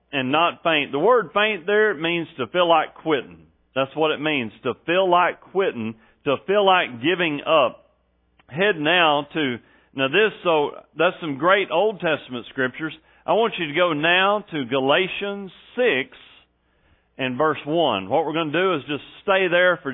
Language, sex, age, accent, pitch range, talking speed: English, male, 40-59, American, 135-210 Hz, 180 wpm